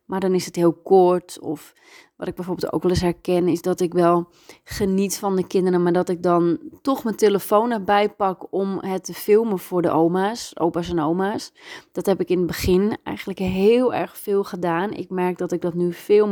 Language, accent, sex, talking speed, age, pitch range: Dutch, Dutch, female, 215 wpm, 30-49, 170-215 Hz